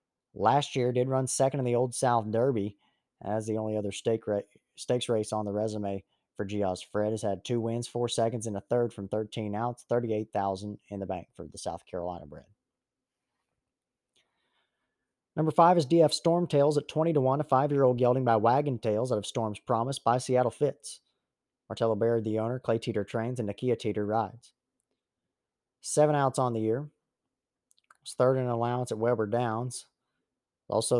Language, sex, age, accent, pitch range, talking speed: English, male, 30-49, American, 105-125 Hz, 175 wpm